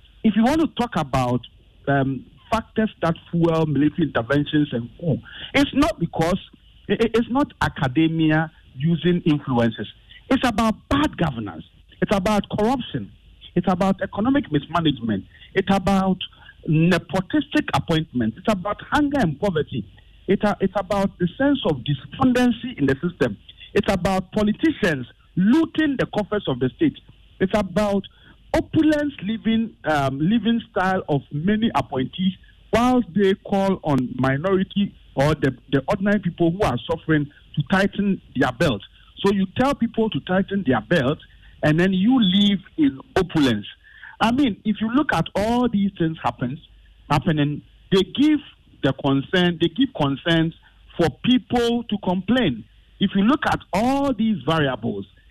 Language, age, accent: English, 50-69, Nigerian